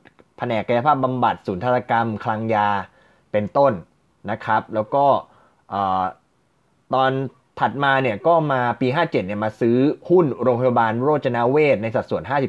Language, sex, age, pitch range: Thai, male, 20-39, 110-135 Hz